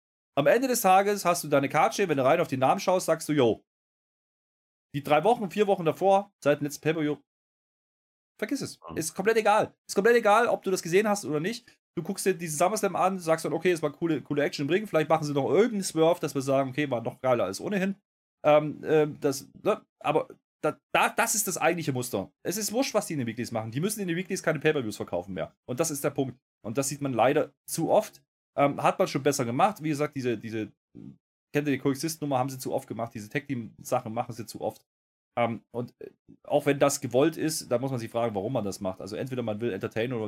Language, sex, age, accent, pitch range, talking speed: German, male, 30-49, German, 130-180 Hz, 245 wpm